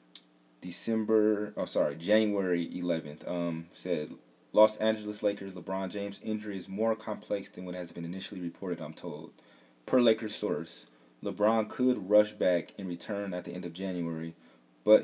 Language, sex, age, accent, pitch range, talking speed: English, male, 20-39, American, 85-110 Hz, 155 wpm